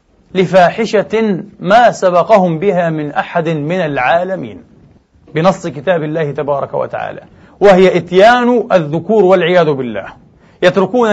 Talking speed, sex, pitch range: 100 wpm, male, 185-220 Hz